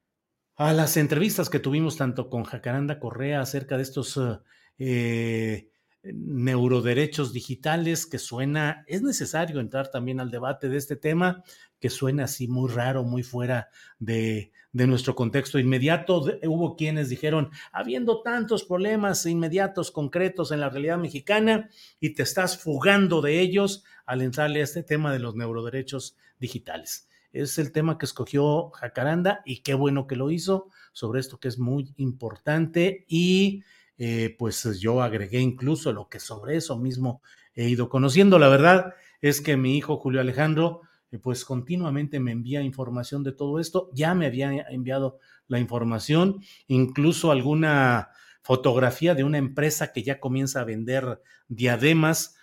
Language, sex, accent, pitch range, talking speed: Spanish, male, Mexican, 125-160 Hz, 150 wpm